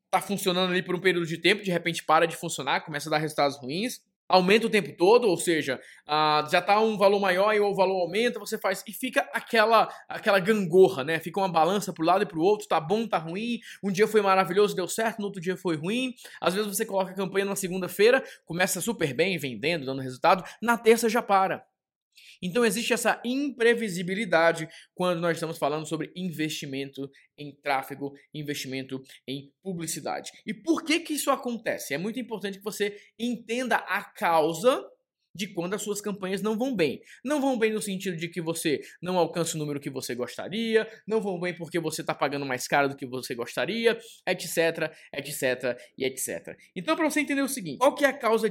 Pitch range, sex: 160-220 Hz, male